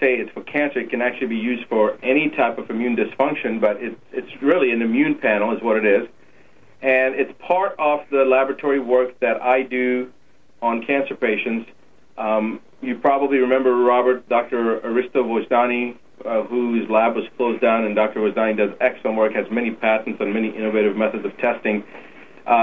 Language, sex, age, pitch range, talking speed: English, male, 40-59, 115-140 Hz, 180 wpm